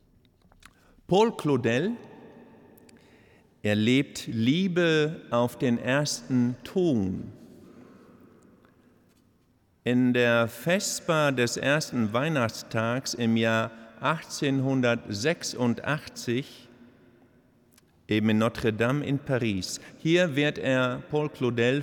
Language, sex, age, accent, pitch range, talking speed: German, male, 50-69, German, 110-145 Hz, 75 wpm